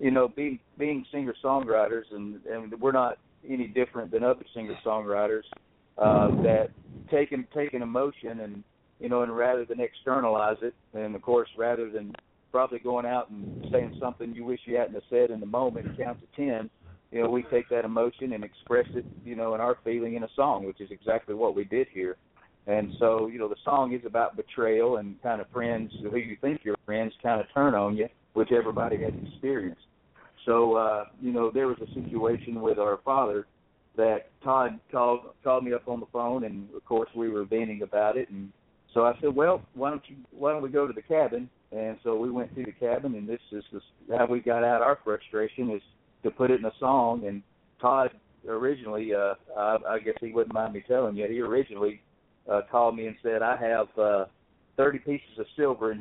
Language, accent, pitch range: English, American, 110-125 Hz